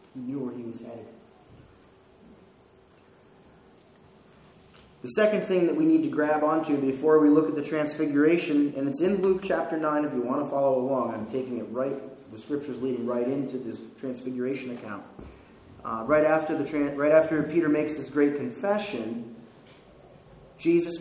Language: English